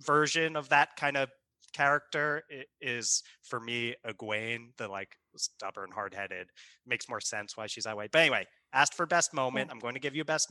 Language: English